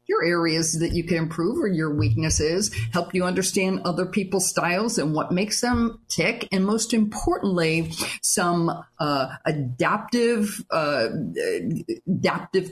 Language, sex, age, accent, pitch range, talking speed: English, female, 50-69, American, 160-205 Hz, 130 wpm